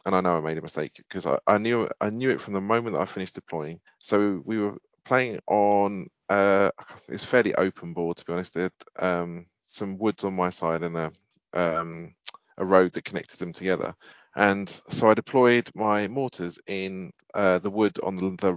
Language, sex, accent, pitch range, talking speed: English, male, British, 85-100 Hz, 195 wpm